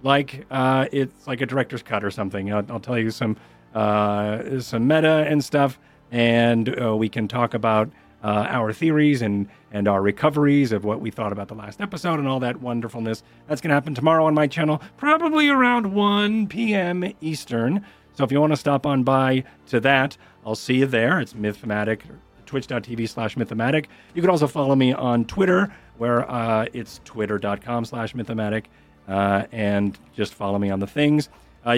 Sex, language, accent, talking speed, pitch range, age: male, English, American, 185 wpm, 110-140 Hz, 40-59